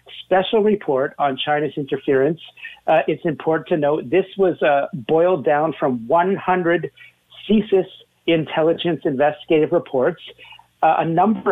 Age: 50-69